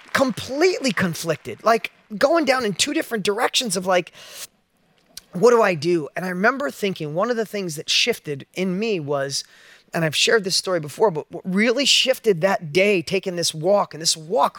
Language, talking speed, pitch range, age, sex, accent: English, 190 wpm, 195-260 Hz, 30-49, male, American